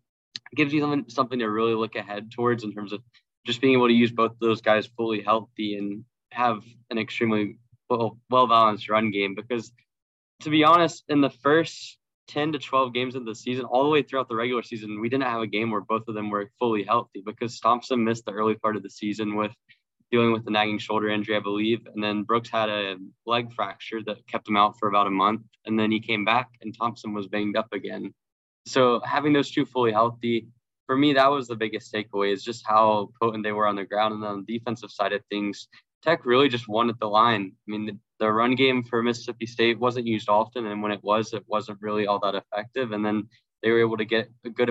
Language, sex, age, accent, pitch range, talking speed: English, male, 10-29, American, 105-120 Hz, 235 wpm